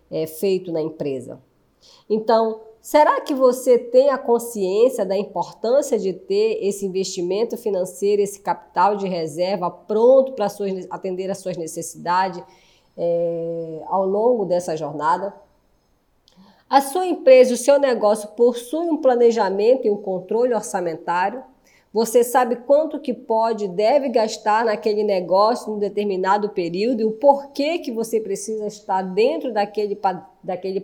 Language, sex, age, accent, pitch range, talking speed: Portuguese, female, 20-39, Brazilian, 185-240 Hz, 130 wpm